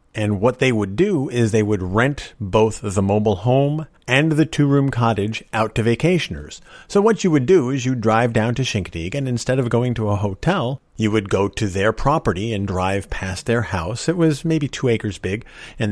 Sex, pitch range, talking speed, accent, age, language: male, 100-125 Hz, 210 wpm, American, 50-69, English